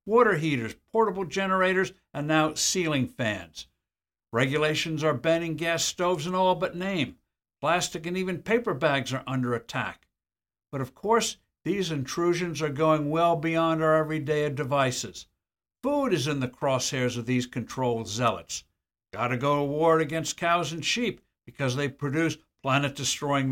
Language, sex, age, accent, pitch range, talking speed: English, male, 60-79, American, 125-170 Hz, 150 wpm